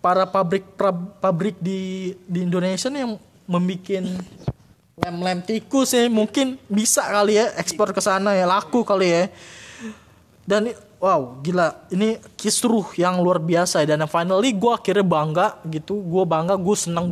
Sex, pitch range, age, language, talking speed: male, 160-220 Hz, 20-39, Indonesian, 150 wpm